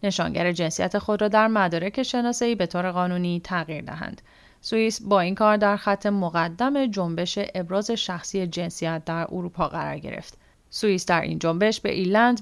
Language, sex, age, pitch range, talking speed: English, female, 30-49, 180-240 Hz, 160 wpm